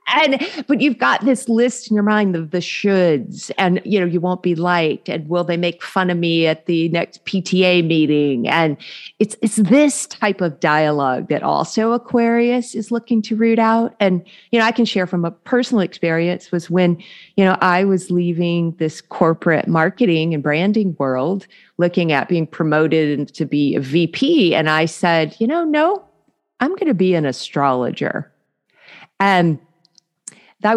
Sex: female